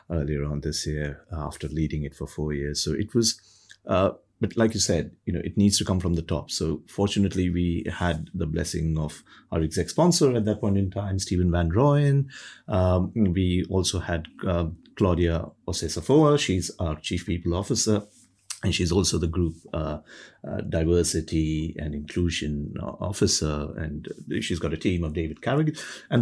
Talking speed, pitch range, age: 175 wpm, 85-110 Hz, 30-49